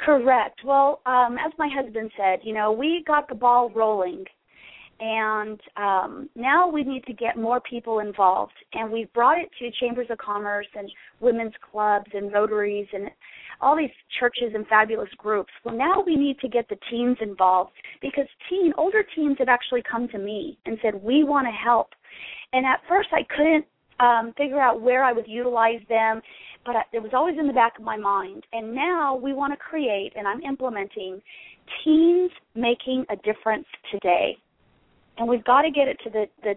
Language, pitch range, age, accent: English, 215-265 Hz, 40-59, American